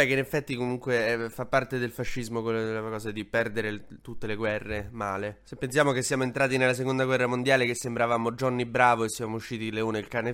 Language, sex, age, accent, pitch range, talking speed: Italian, male, 20-39, native, 115-140 Hz, 205 wpm